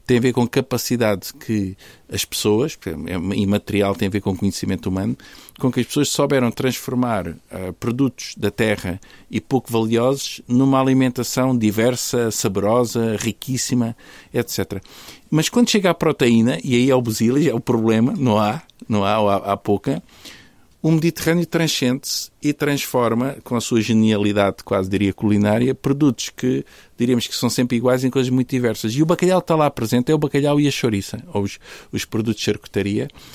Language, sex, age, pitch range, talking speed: Portuguese, male, 50-69, 105-140 Hz, 175 wpm